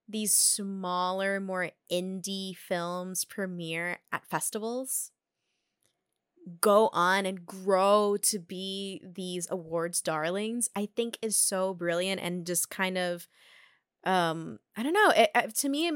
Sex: female